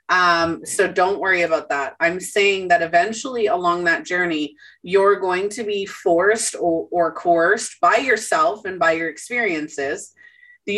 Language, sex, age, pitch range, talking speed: English, female, 30-49, 175-240 Hz, 155 wpm